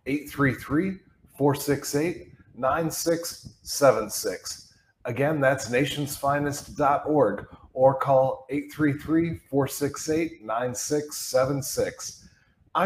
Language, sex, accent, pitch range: English, male, American, 130-160 Hz